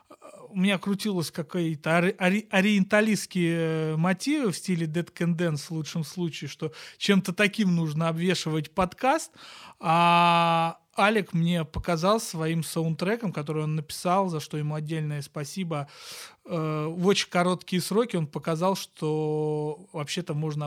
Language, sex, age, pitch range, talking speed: Russian, male, 30-49, 155-185 Hz, 125 wpm